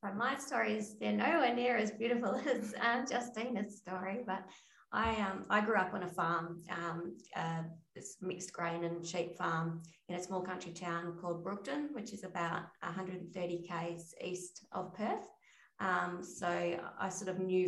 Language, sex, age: English, female, 20-39